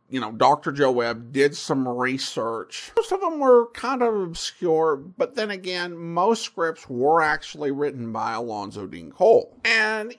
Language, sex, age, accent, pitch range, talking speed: English, male, 50-69, American, 140-220 Hz, 165 wpm